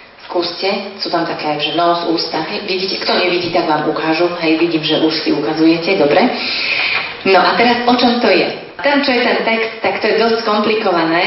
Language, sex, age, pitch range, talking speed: Slovak, female, 30-49, 170-200 Hz, 200 wpm